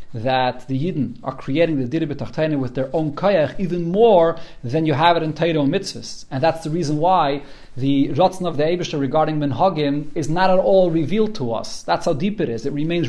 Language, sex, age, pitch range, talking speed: English, male, 40-59, 140-190 Hz, 220 wpm